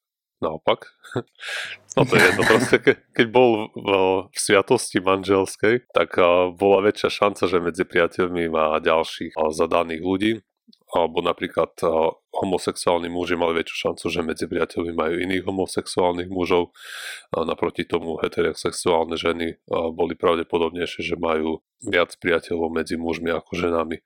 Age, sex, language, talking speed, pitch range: 30-49, male, Slovak, 120 wpm, 85-95 Hz